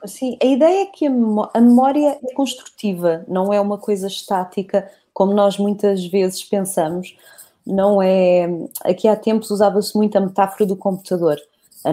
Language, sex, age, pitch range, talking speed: Portuguese, female, 20-39, 190-235 Hz, 155 wpm